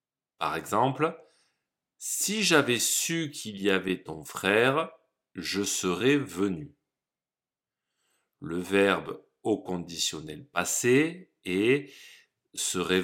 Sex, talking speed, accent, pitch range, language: male, 90 wpm, French, 90-140 Hz, French